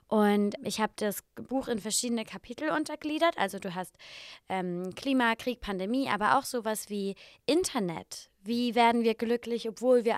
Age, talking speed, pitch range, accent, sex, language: 20-39, 160 wpm, 210-260 Hz, German, female, German